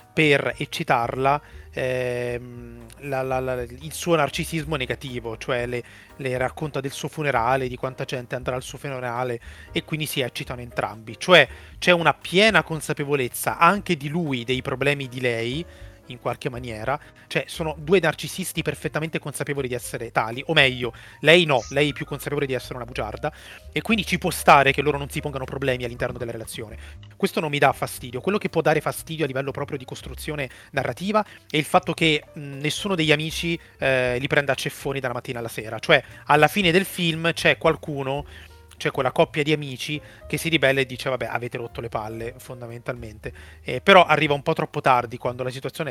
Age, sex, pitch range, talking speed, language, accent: 30-49, male, 120-150 Hz, 185 wpm, Italian, native